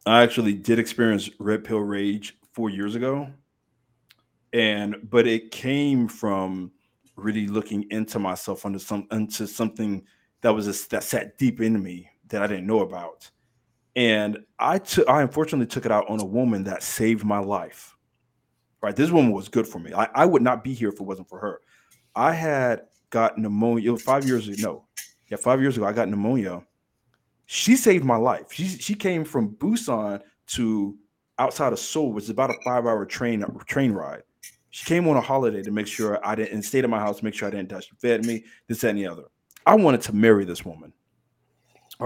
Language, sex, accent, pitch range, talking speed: English, male, American, 105-120 Hz, 195 wpm